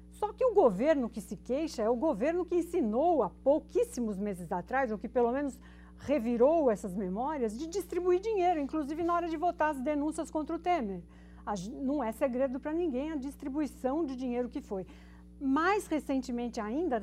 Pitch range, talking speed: 225-315 Hz, 175 wpm